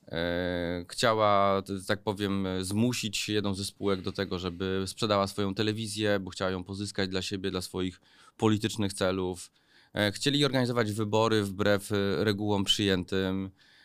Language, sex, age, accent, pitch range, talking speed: Polish, male, 20-39, native, 95-110 Hz, 125 wpm